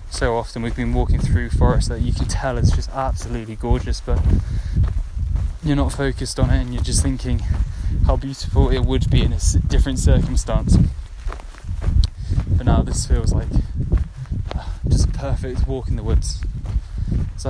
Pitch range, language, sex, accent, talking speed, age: 80-105 Hz, English, male, British, 160 wpm, 10-29